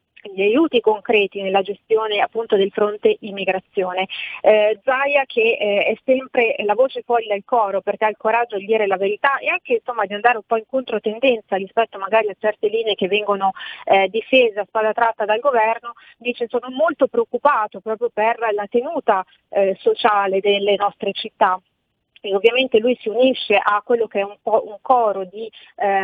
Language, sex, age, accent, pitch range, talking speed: Italian, female, 30-49, native, 205-240 Hz, 175 wpm